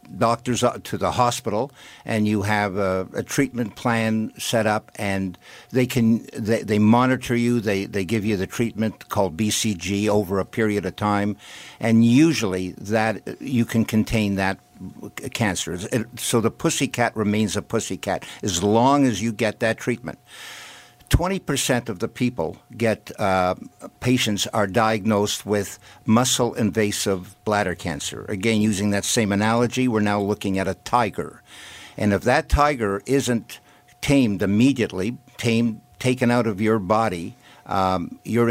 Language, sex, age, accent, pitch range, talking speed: English, male, 60-79, American, 100-120 Hz, 145 wpm